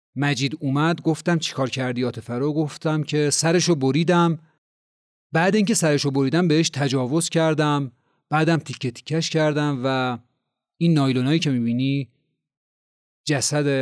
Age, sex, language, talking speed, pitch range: 40-59, male, Persian, 120 wpm, 135-185 Hz